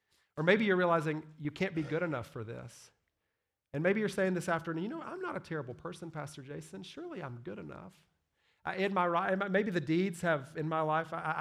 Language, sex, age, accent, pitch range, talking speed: English, male, 40-59, American, 140-180 Hz, 215 wpm